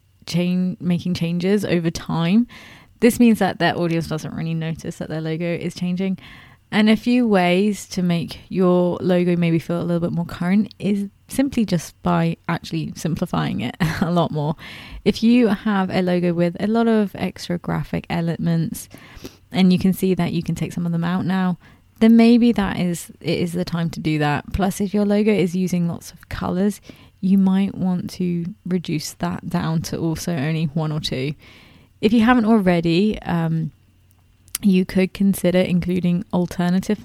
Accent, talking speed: British, 180 wpm